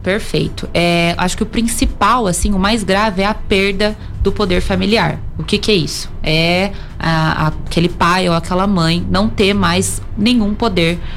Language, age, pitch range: Portuguese, 20-39, 160-190 Hz